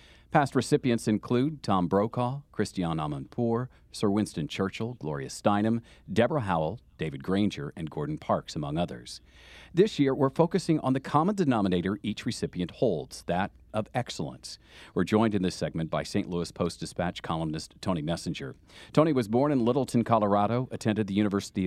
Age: 40-59